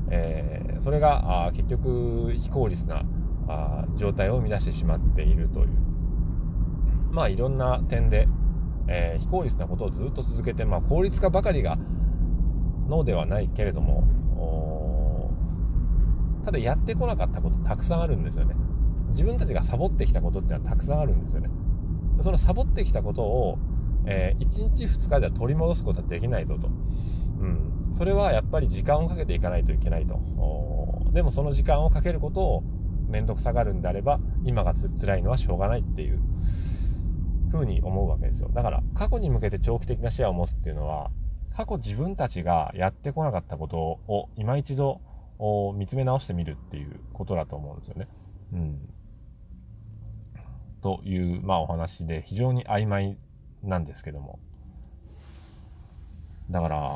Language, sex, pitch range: Japanese, male, 80-105 Hz